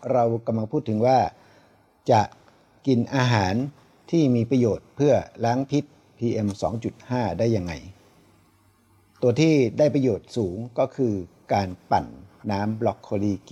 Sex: male